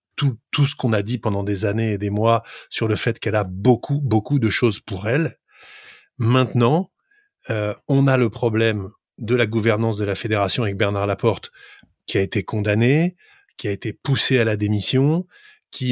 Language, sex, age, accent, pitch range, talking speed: French, male, 20-39, French, 105-130 Hz, 190 wpm